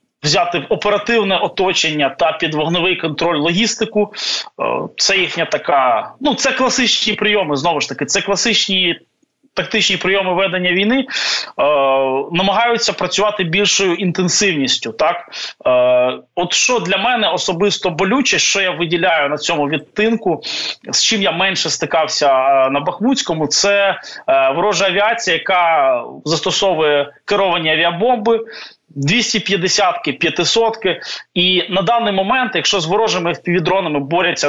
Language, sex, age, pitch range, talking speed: Ukrainian, male, 20-39, 160-210 Hz, 120 wpm